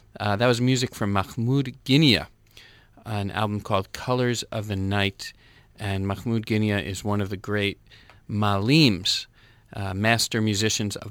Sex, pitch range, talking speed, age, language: male, 105-125 Hz, 145 wpm, 40-59, English